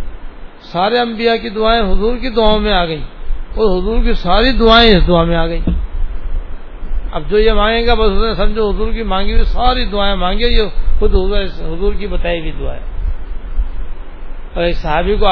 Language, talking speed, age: English, 165 wpm, 60-79